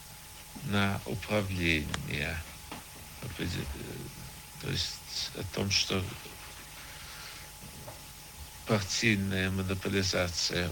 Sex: male